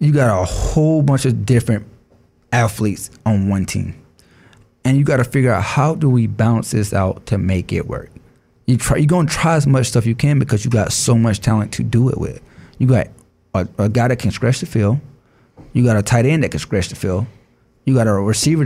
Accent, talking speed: American, 225 wpm